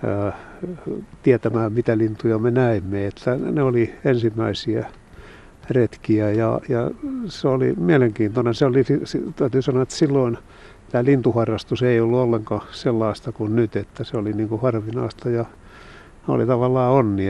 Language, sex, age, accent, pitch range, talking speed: Finnish, male, 60-79, native, 110-125 Hz, 135 wpm